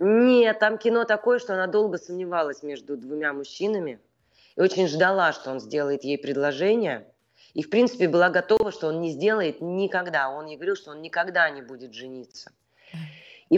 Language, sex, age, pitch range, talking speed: Russian, female, 30-49, 145-190 Hz, 170 wpm